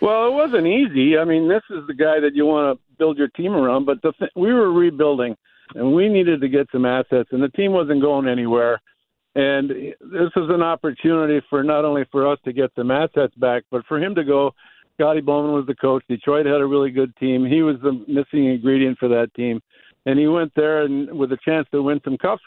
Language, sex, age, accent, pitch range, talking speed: English, male, 60-79, American, 130-155 Hz, 235 wpm